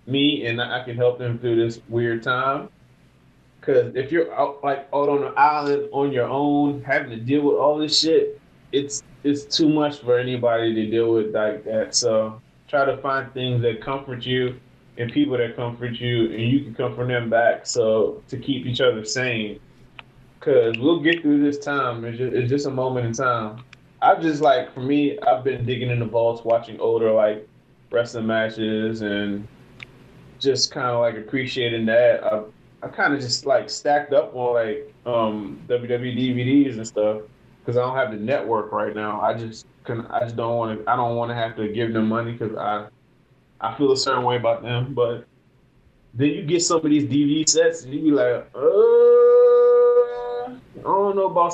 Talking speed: 195 wpm